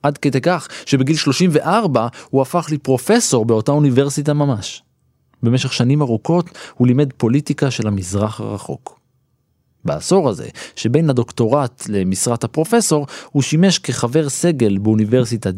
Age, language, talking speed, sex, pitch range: 20-39, Hebrew, 120 wpm, male, 110-155 Hz